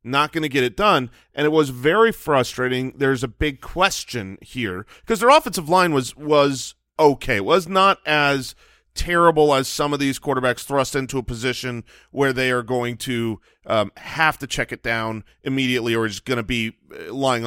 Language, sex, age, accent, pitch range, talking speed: English, male, 30-49, American, 125-170 Hz, 190 wpm